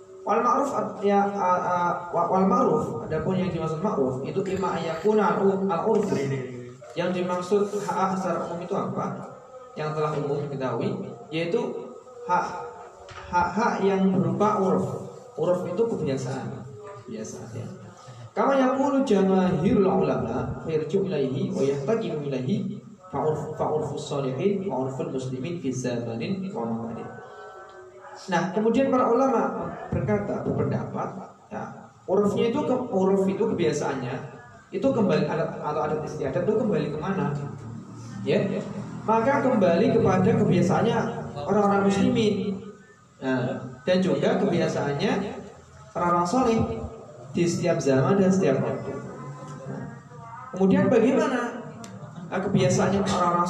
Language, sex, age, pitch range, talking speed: Indonesian, male, 20-39, 155-210 Hz, 110 wpm